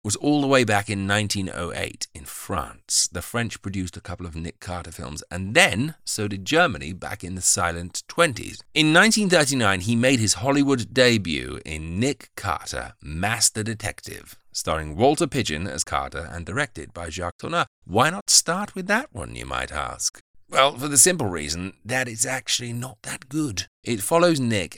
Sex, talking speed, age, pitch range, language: male, 175 wpm, 30-49, 90-130 Hz, English